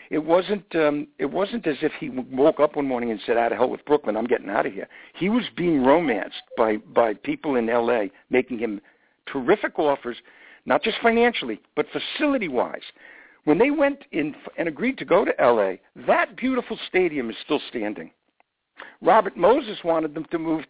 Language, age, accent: English, 60-79, American